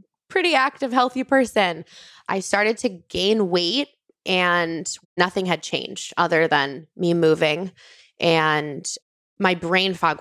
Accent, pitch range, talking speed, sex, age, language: American, 160-185 Hz, 125 wpm, female, 20-39, English